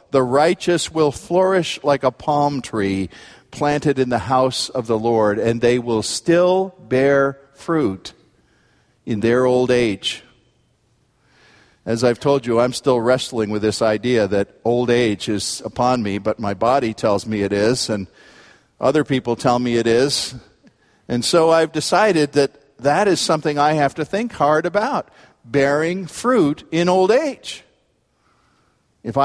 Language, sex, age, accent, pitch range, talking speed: English, male, 50-69, American, 120-160 Hz, 155 wpm